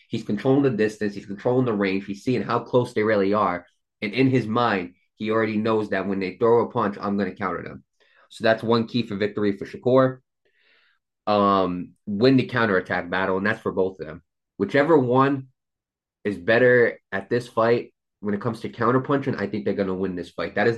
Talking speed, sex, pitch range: 215 wpm, male, 95-120 Hz